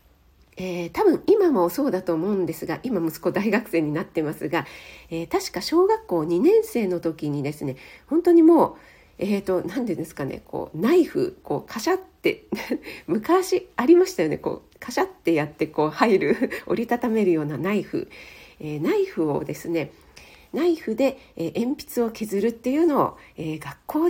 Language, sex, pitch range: Japanese, female, 185-310 Hz